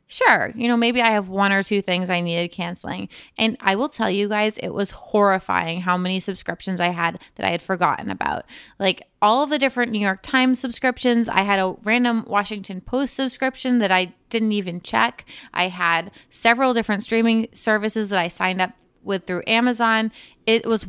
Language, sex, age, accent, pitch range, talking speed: English, female, 20-39, American, 190-240 Hz, 195 wpm